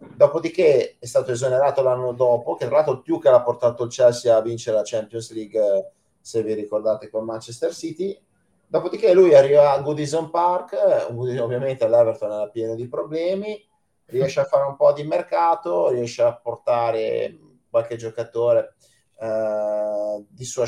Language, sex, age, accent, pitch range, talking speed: Italian, male, 30-49, native, 115-165 Hz, 155 wpm